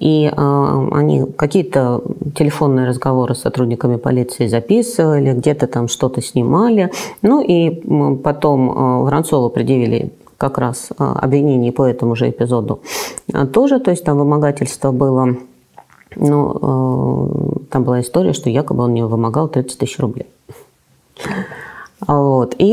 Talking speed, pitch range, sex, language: 120 wpm, 125-170 Hz, female, Russian